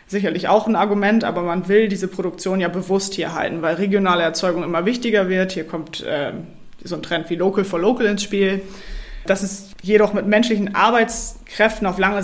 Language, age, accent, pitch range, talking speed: German, 20-39, German, 170-200 Hz, 190 wpm